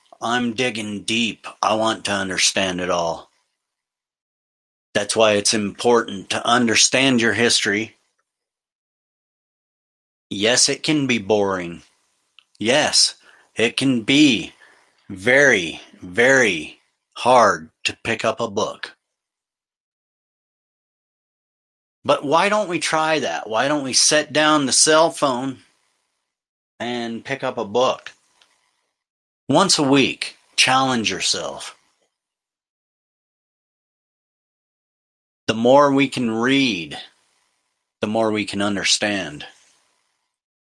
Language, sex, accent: English, male, American